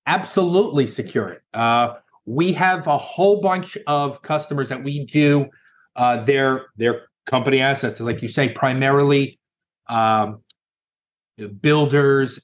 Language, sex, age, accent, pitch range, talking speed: English, male, 30-49, American, 115-145 Hz, 120 wpm